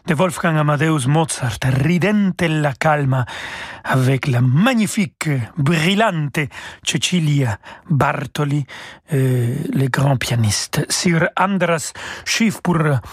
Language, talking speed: French, 105 wpm